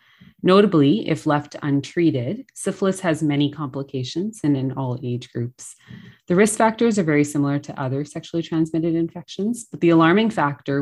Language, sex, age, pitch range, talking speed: English, female, 30-49, 140-170 Hz, 155 wpm